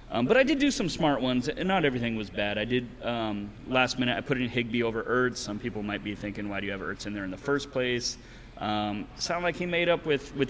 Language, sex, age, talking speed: English, male, 30-49, 275 wpm